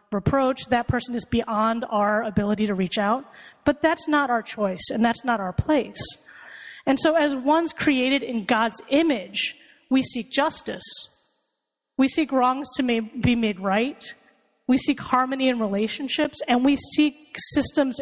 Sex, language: female, English